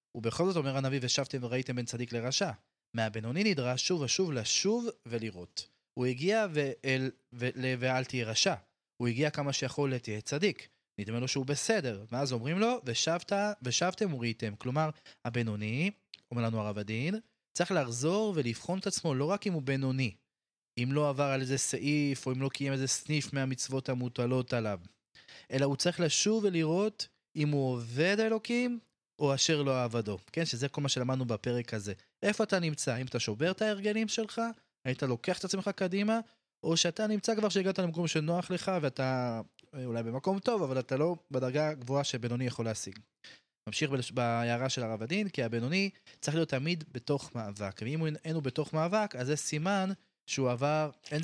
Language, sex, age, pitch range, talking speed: Hebrew, male, 20-39, 125-175 Hz, 170 wpm